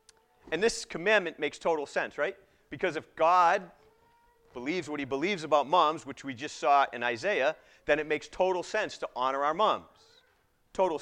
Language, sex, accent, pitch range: English, male, American, 125-175 Hz